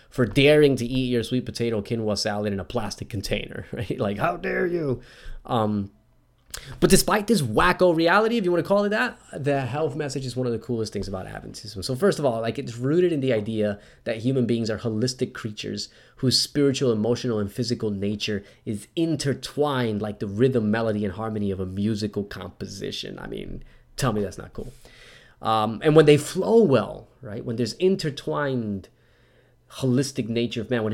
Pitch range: 105-140 Hz